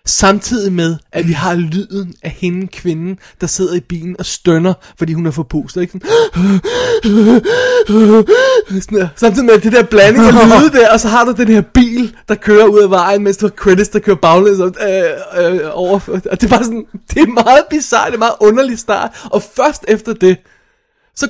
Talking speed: 190 wpm